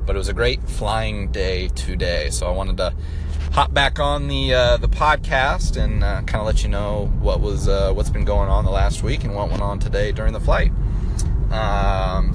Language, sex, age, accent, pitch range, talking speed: English, male, 30-49, American, 90-115 Hz, 220 wpm